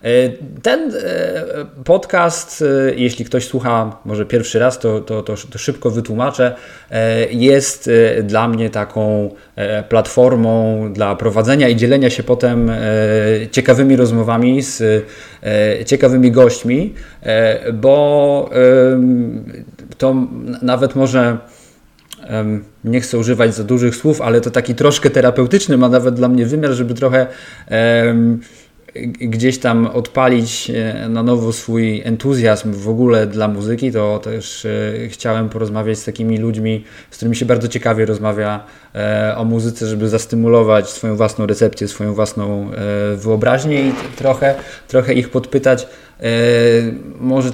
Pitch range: 110-125 Hz